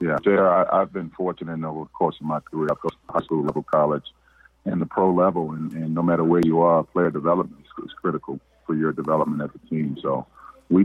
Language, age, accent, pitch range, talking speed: English, 40-59, American, 75-80 Hz, 240 wpm